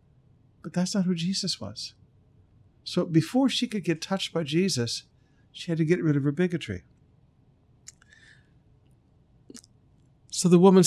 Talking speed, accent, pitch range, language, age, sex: 140 wpm, American, 120-165 Hz, English, 60-79, male